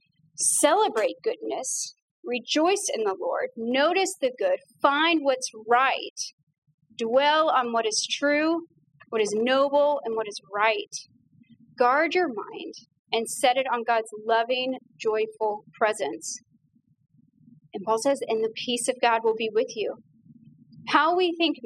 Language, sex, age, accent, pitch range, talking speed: English, female, 30-49, American, 230-310 Hz, 140 wpm